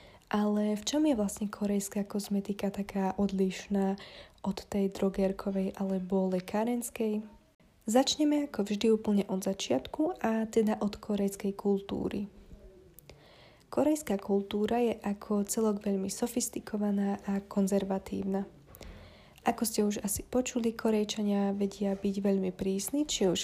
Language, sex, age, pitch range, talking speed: Slovak, female, 20-39, 195-220 Hz, 120 wpm